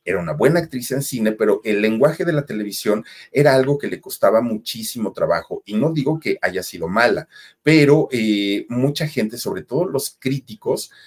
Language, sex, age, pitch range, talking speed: Spanish, male, 40-59, 110-185 Hz, 185 wpm